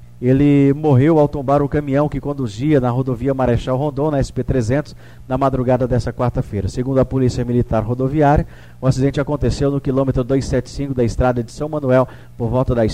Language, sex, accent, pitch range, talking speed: Portuguese, male, Brazilian, 125-145 Hz, 170 wpm